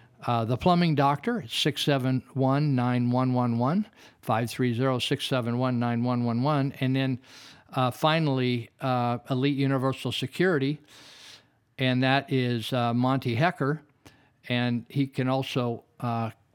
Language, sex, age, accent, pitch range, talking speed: English, male, 50-69, American, 120-145 Hz, 100 wpm